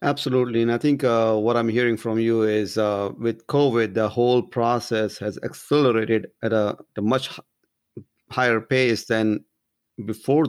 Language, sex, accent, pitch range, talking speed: English, male, Indian, 110-125 Hz, 155 wpm